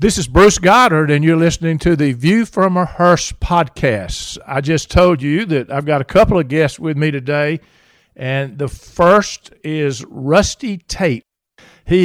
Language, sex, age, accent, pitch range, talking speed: English, male, 50-69, American, 140-170 Hz, 175 wpm